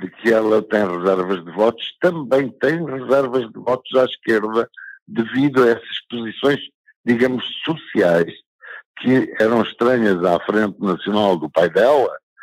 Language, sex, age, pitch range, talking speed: Portuguese, male, 60-79, 90-130 Hz, 140 wpm